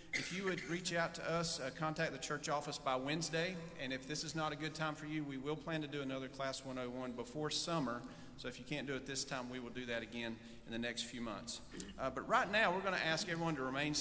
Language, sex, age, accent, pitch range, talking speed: English, male, 40-59, American, 135-165 Hz, 270 wpm